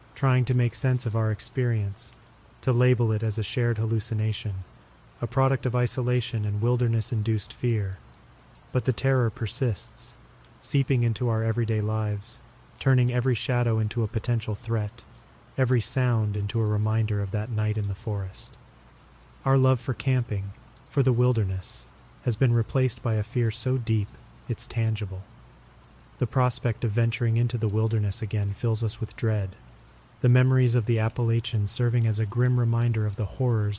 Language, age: English, 30-49